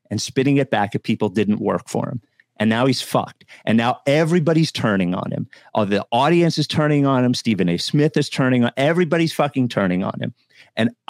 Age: 50-69